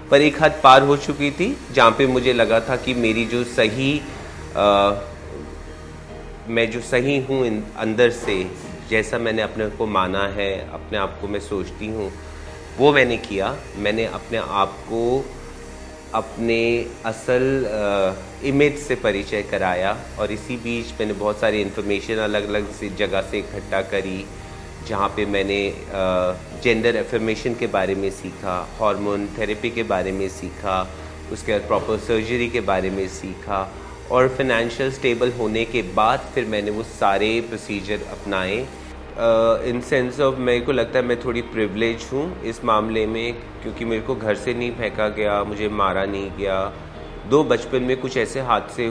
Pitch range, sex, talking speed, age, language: 95-115 Hz, male, 160 wpm, 30-49, Hindi